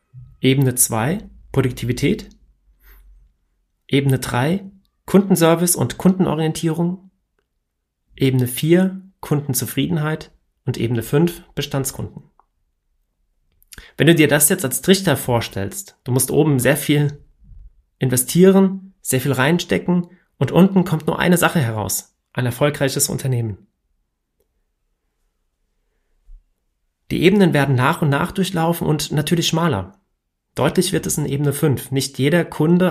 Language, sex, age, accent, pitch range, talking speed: German, male, 40-59, German, 120-170 Hz, 110 wpm